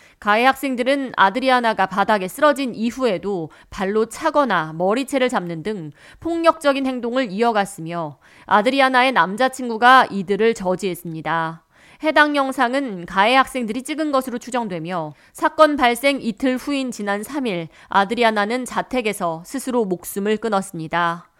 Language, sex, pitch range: Korean, female, 190-270 Hz